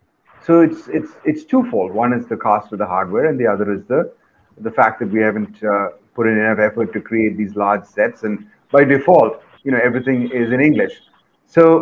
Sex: male